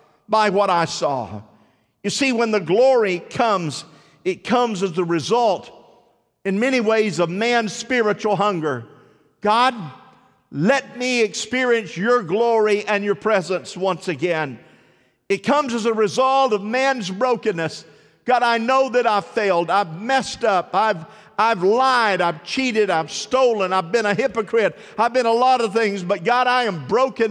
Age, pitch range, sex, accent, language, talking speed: 50-69, 195-240 Hz, male, American, English, 160 wpm